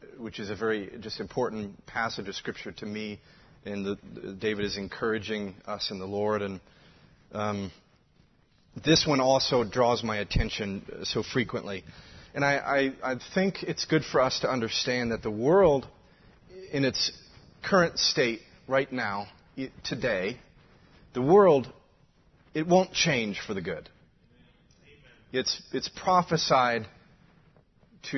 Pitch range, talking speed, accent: 110-150 Hz, 135 wpm, American